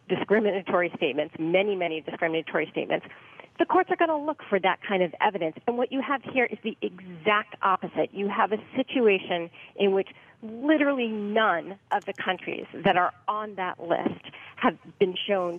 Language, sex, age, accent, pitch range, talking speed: English, female, 40-59, American, 180-230 Hz, 175 wpm